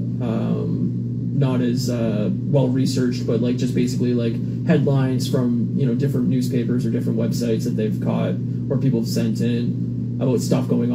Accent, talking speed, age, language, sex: American, 170 wpm, 20-39, English, male